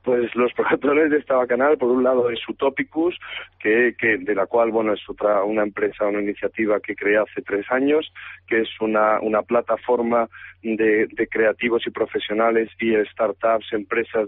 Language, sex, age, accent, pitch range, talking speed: Spanish, male, 40-59, Spanish, 105-120 Hz, 170 wpm